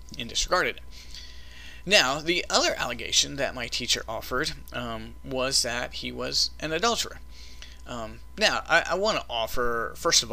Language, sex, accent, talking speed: English, male, American, 145 wpm